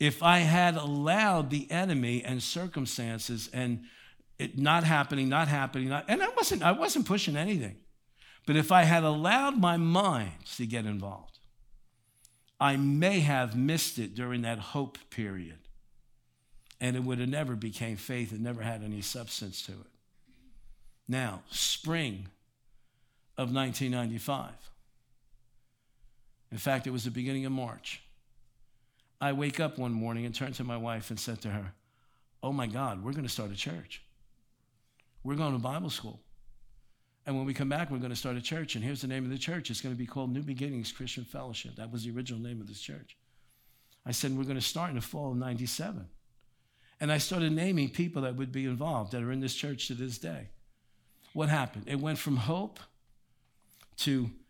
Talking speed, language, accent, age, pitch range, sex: 180 wpm, English, American, 60-79, 115-140 Hz, male